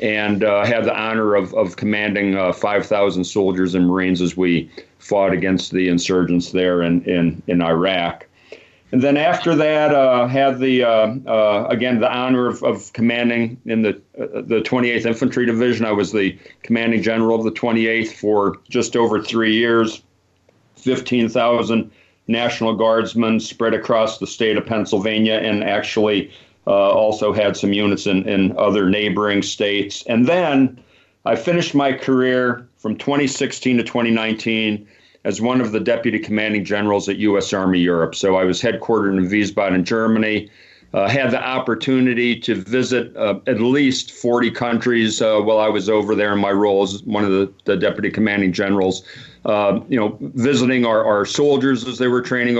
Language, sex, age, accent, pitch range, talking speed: English, male, 40-59, American, 100-120 Hz, 170 wpm